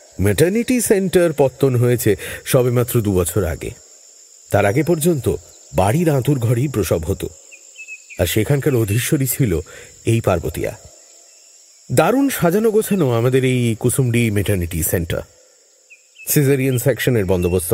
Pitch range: 105-155 Hz